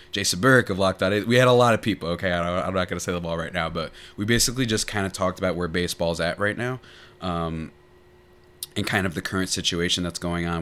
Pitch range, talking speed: 80-95 Hz, 250 wpm